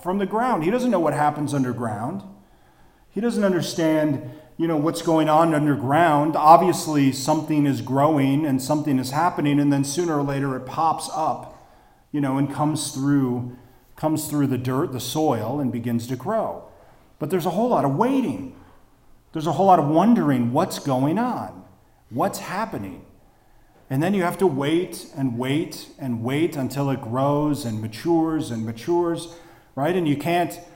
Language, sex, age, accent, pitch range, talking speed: English, male, 40-59, American, 130-165 Hz, 170 wpm